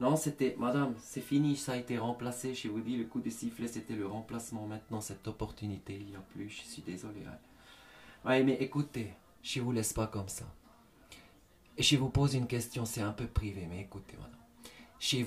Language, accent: French, French